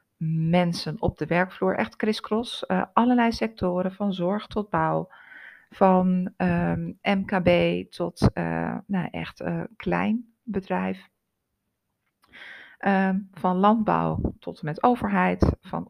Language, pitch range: Dutch, 165-210 Hz